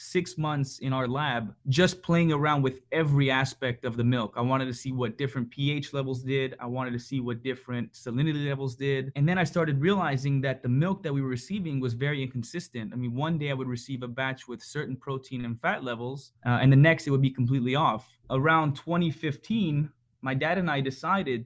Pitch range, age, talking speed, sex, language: 130-155 Hz, 20-39, 220 wpm, male, English